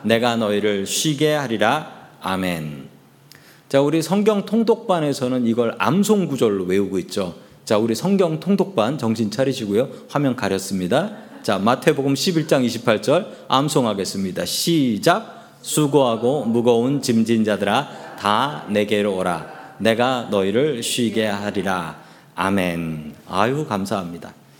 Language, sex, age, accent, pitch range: Korean, male, 40-59, native, 105-160 Hz